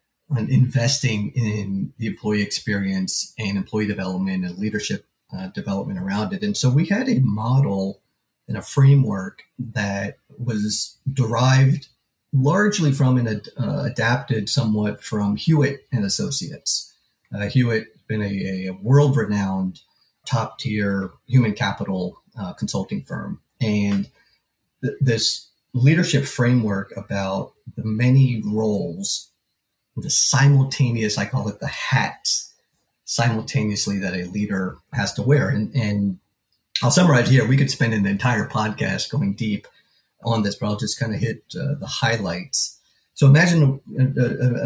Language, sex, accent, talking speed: English, male, American, 130 wpm